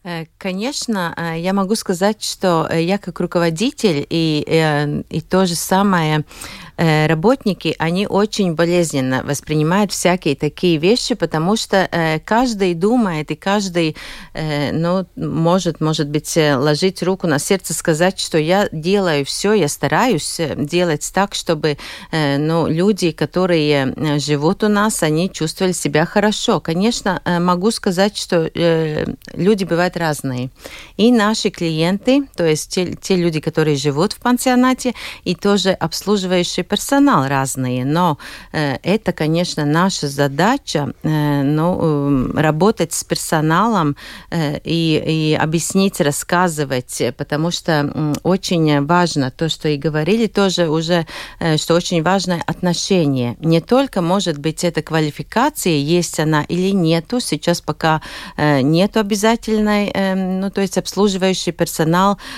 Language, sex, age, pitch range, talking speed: Russian, female, 40-59, 155-195 Hz, 125 wpm